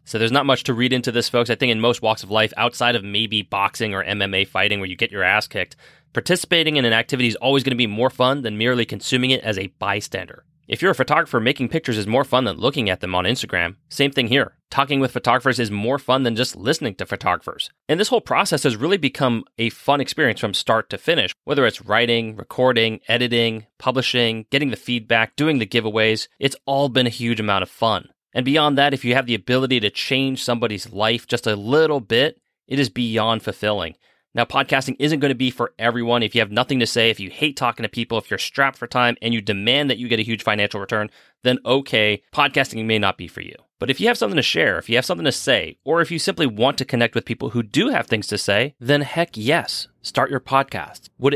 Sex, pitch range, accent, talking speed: male, 110-135 Hz, American, 240 wpm